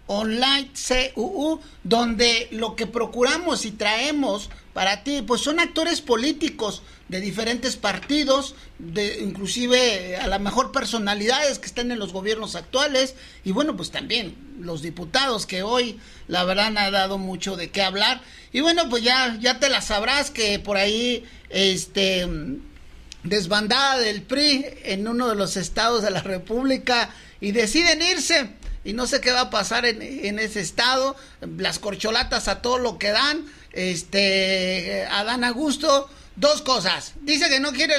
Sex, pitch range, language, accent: male, 205-270 Hz, Spanish, Mexican